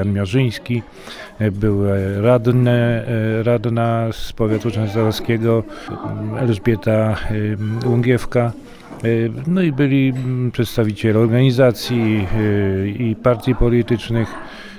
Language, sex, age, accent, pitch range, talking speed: Polish, male, 40-59, native, 105-120 Hz, 70 wpm